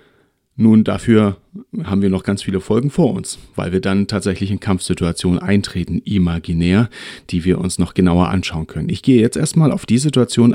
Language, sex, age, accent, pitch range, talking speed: German, male, 40-59, German, 95-115 Hz, 180 wpm